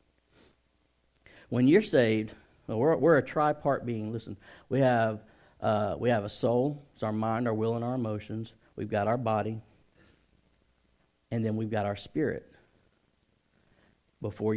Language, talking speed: English, 150 wpm